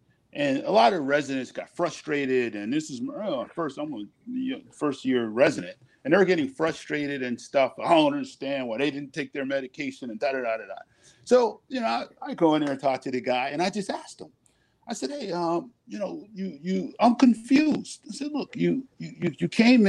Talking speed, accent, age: 225 wpm, American, 50-69